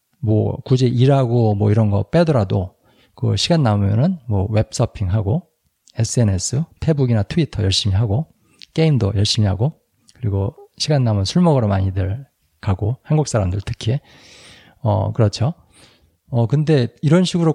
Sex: male